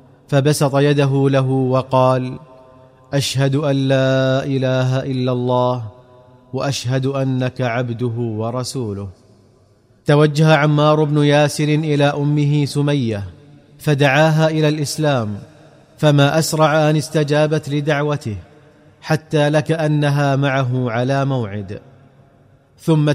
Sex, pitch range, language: male, 130-150 Hz, Arabic